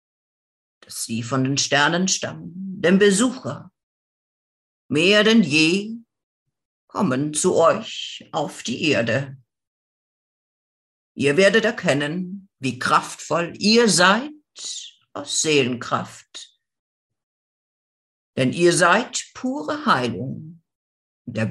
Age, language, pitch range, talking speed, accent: 50-69, German, 140-205 Hz, 85 wpm, German